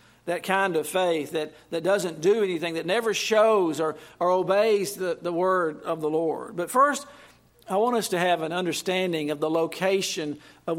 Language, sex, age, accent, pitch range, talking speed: English, male, 50-69, American, 170-205 Hz, 190 wpm